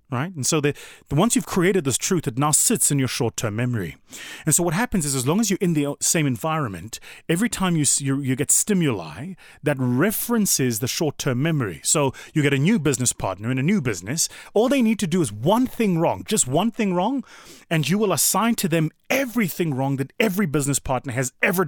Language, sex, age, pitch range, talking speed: English, male, 30-49, 115-180 Hz, 220 wpm